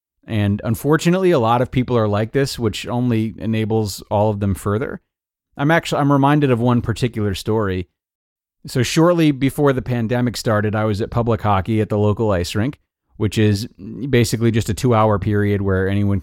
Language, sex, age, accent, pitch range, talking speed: English, male, 30-49, American, 100-145 Hz, 185 wpm